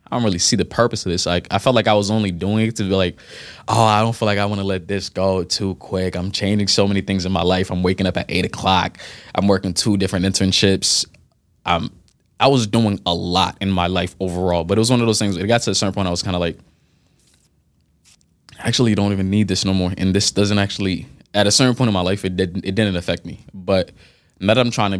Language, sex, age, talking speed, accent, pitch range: English, male, 20-39, 265 wpm, American, 90-105 Hz